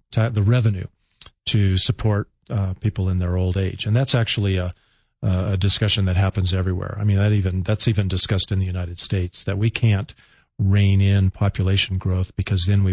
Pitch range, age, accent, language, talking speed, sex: 95-110 Hz, 40-59, American, English, 185 wpm, male